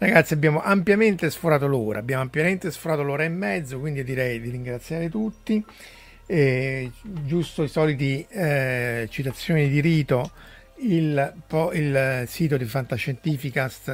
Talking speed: 120 wpm